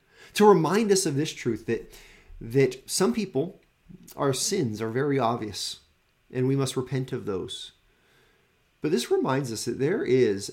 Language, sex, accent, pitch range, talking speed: English, male, American, 110-180 Hz, 160 wpm